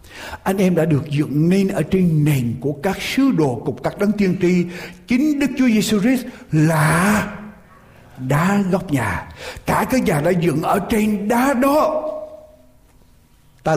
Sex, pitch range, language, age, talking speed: male, 130-195 Hz, Vietnamese, 60-79, 155 wpm